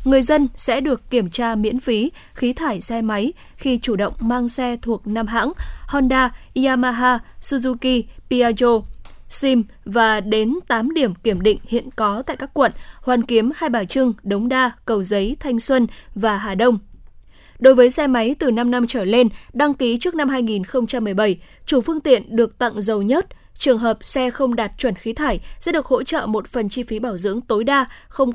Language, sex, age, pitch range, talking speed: Vietnamese, female, 10-29, 220-265 Hz, 195 wpm